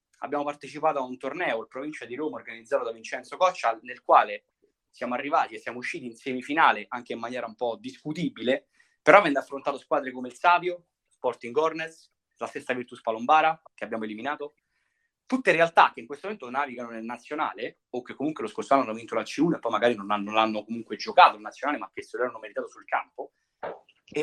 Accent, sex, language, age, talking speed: native, male, Italian, 30-49, 200 wpm